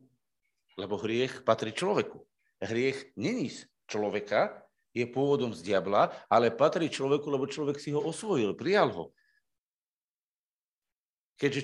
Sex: male